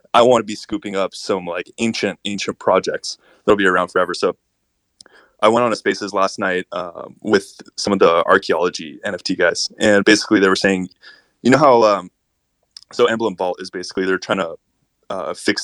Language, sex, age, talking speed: English, male, 20-39, 190 wpm